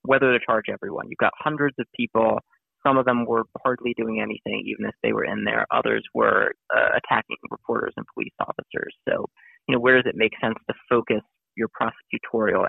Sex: male